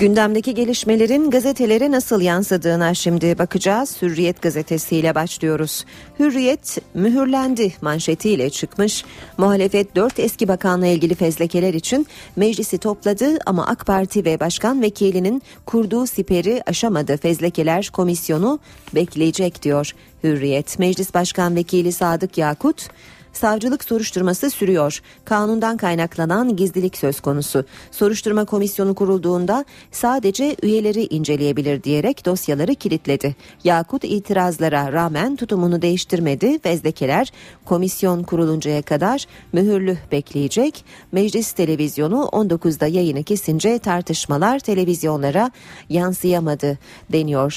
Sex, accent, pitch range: female, native, 160-215 Hz